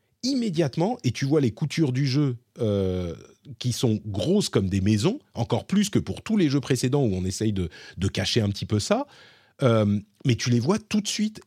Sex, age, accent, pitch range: male, 40-59, French, 100-145 Hz